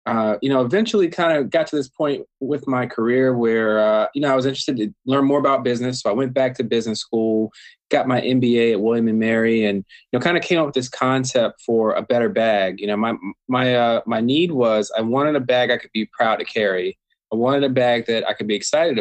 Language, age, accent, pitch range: English, 20-39, American, 110-135 Hz